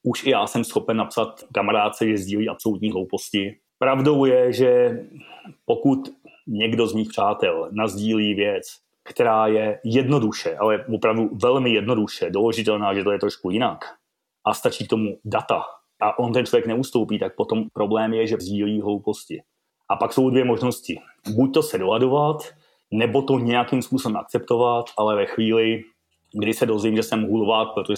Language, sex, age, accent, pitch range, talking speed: Czech, male, 30-49, native, 105-130 Hz, 160 wpm